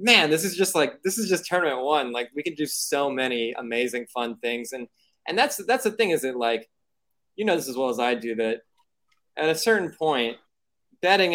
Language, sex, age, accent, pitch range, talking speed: English, male, 20-39, American, 115-160 Hz, 220 wpm